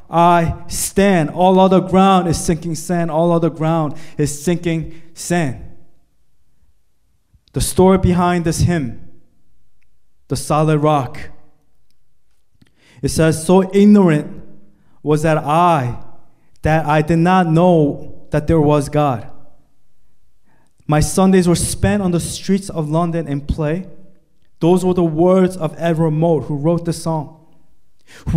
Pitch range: 160-195 Hz